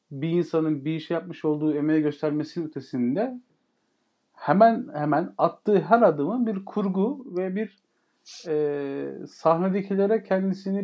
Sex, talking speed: male, 120 wpm